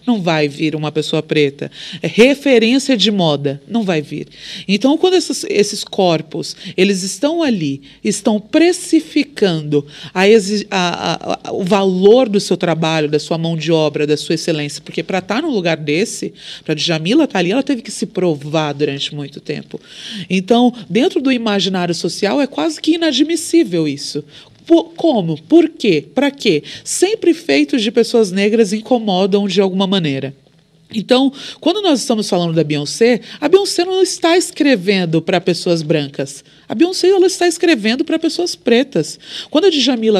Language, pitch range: Portuguese, 175-285 Hz